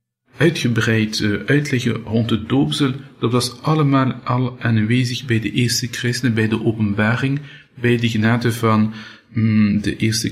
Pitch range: 115-135 Hz